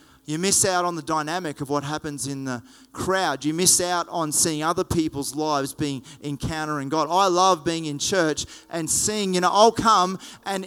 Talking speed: 195 wpm